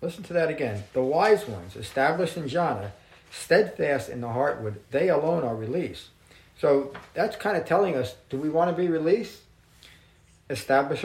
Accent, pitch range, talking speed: American, 110-155 Hz, 170 wpm